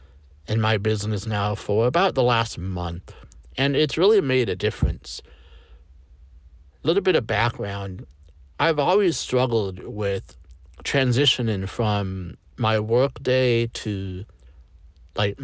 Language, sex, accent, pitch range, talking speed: English, male, American, 90-120 Hz, 115 wpm